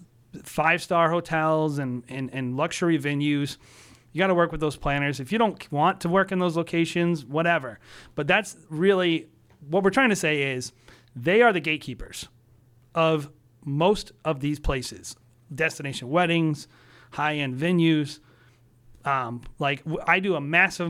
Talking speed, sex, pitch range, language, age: 155 wpm, male, 130-170 Hz, English, 30-49